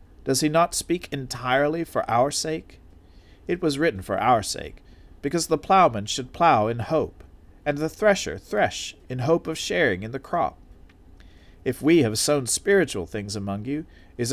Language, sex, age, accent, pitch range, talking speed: English, male, 40-59, American, 95-150 Hz, 170 wpm